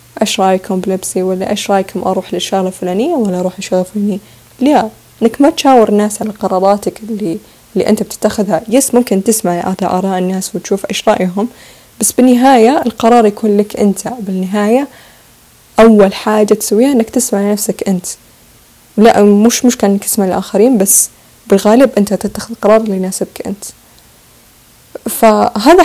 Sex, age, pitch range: female, 20-39, 190-225 Hz